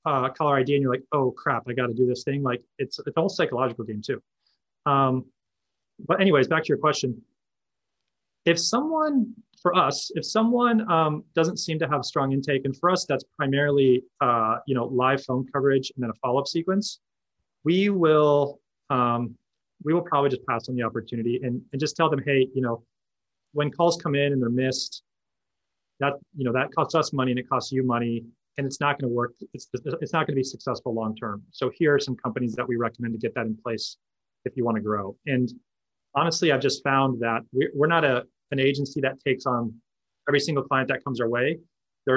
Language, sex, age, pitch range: English, male, 30-49, 120-145 Hz